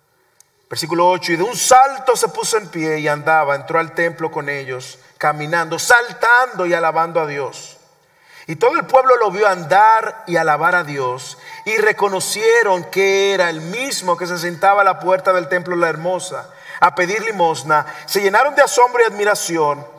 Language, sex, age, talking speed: English, male, 50-69, 175 wpm